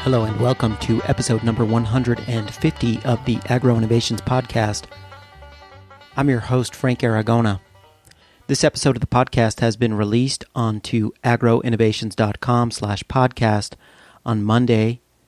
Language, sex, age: English, male, 40-59